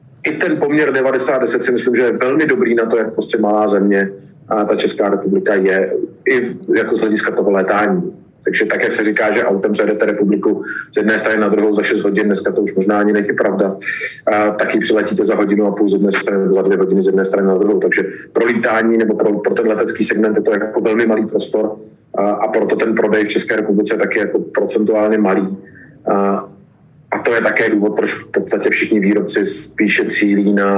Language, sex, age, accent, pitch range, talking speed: Czech, male, 30-49, native, 95-110 Hz, 210 wpm